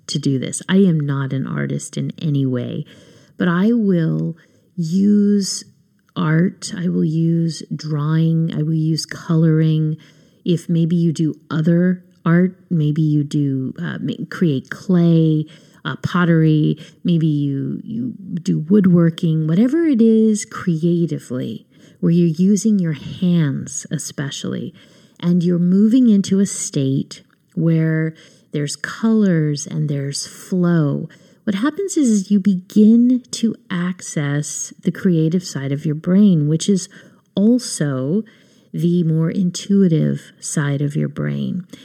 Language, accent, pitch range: English, American, 155-195 Hz